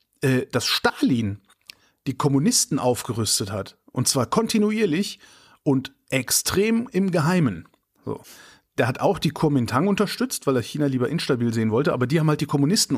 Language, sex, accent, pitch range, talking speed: German, male, German, 125-160 Hz, 150 wpm